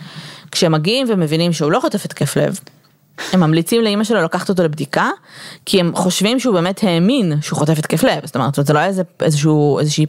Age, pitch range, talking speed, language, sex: 20-39, 150-195 Hz, 200 wpm, Hebrew, female